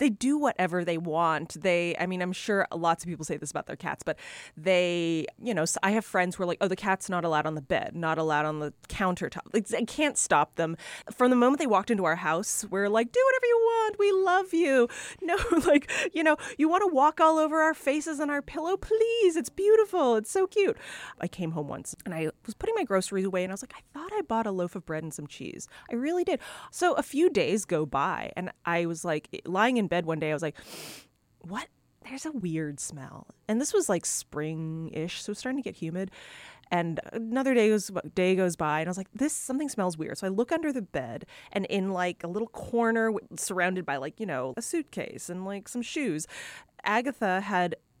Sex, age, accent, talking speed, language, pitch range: female, 20-39, American, 230 wpm, English, 165-250 Hz